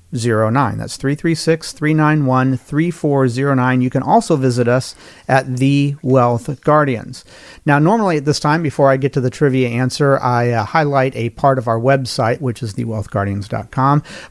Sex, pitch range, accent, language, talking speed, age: male, 125-155 Hz, American, English, 145 wpm, 40-59